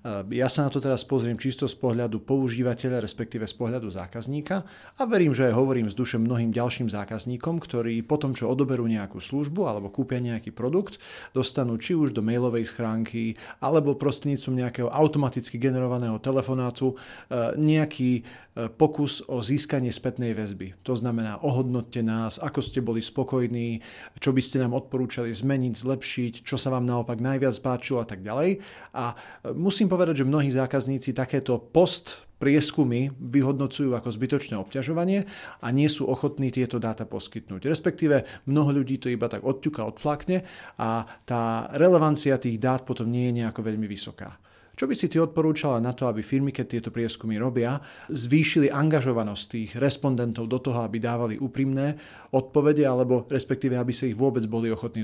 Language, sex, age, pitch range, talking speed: Slovak, male, 40-59, 115-140 Hz, 155 wpm